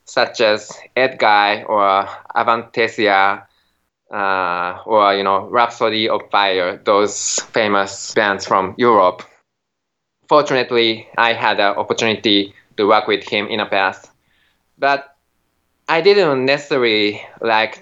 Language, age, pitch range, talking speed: English, 20-39, 105-135 Hz, 115 wpm